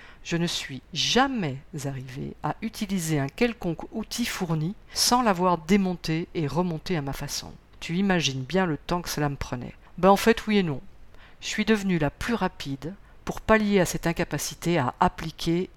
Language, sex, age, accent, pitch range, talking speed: French, female, 50-69, French, 145-190 Hz, 180 wpm